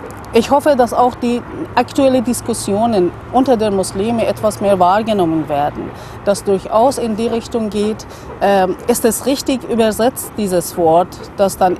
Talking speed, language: 145 wpm, German